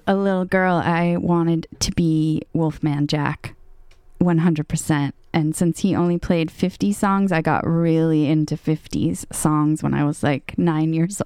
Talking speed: 155 wpm